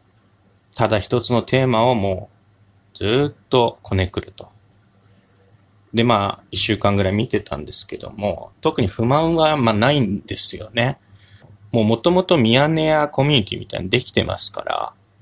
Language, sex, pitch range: Japanese, male, 100-125 Hz